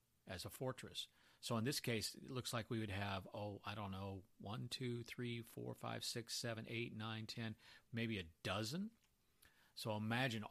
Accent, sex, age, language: American, male, 40-59, English